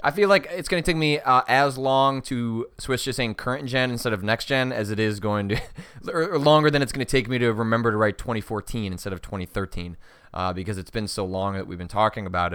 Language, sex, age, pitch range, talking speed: English, male, 20-39, 95-120 Hz, 255 wpm